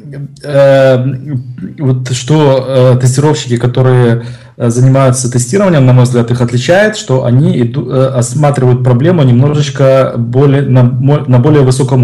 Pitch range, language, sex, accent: 120-135 Hz, Russian, male, native